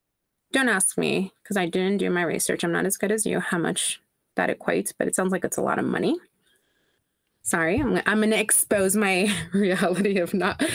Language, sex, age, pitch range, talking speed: English, female, 20-39, 170-210 Hz, 205 wpm